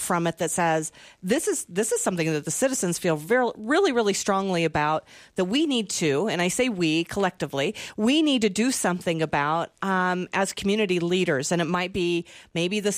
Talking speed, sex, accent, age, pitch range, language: 200 wpm, female, American, 40-59, 175-225 Hz, English